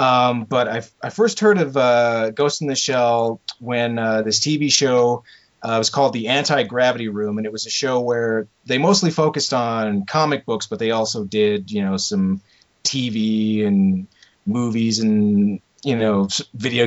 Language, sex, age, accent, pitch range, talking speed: English, male, 30-49, American, 110-145 Hz, 180 wpm